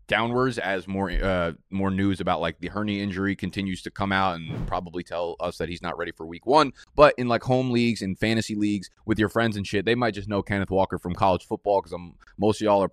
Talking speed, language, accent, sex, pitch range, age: 250 wpm, English, American, male, 95-115 Hz, 20-39